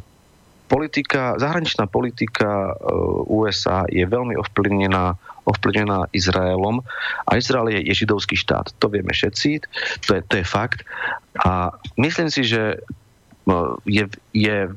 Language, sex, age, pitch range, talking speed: Slovak, male, 30-49, 95-110 Hz, 115 wpm